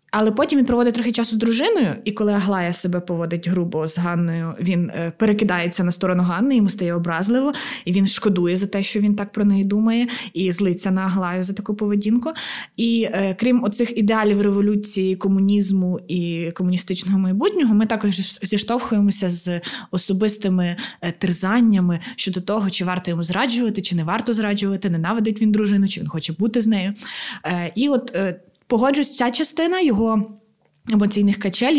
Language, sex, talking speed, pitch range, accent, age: Ukrainian, female, 160 wpm, 180-225 Hz, native, 20-39